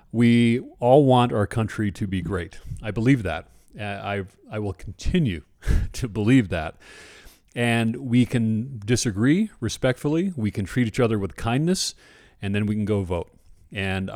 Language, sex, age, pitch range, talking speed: English, male, 40-59, 95-120 Hz, 160 wpm